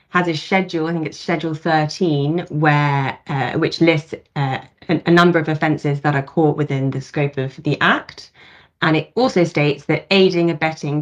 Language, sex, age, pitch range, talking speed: English, female, 20-39, 140-165 Hz, 185 wpm